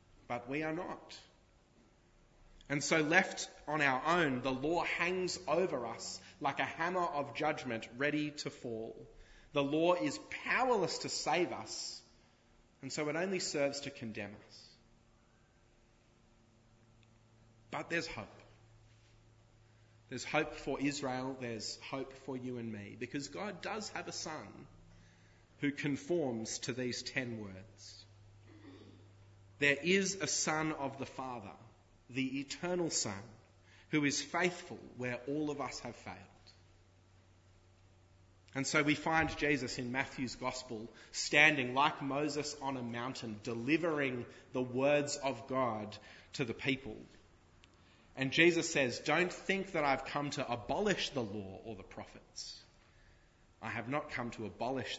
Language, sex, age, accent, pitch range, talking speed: English, male, 30-49, Australian, 105-145 Hz, 135 wpm